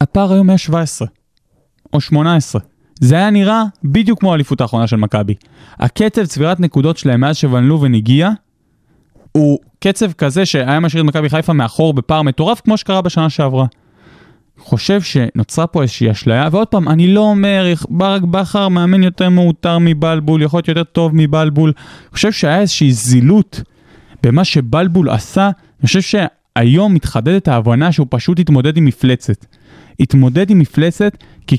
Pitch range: 145-200 Hz